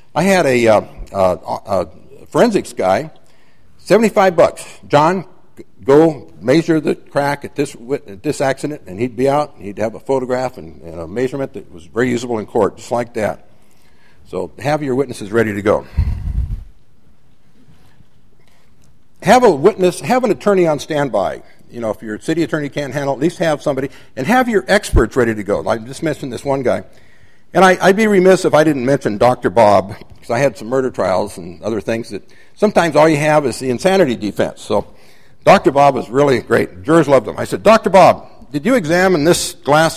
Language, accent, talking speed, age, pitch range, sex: English, American, 190 wpm, 60-79, 125-180 Hz, male